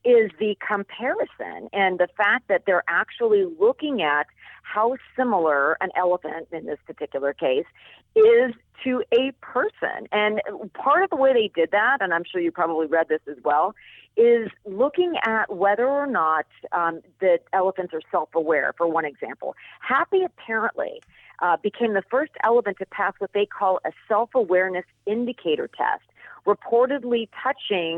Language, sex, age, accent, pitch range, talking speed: English, female, 40-59, American, 175-270 Hz, 155 wpm